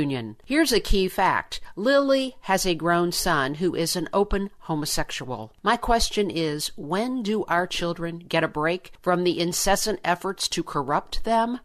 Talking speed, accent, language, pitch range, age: 160 wpm, American, English, 160-205 Hz, 50-69